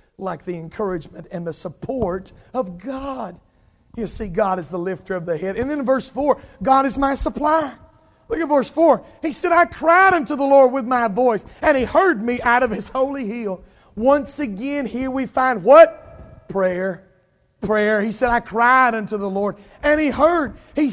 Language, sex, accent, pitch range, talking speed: English, male, American, 210-275 Hz, 195 wpm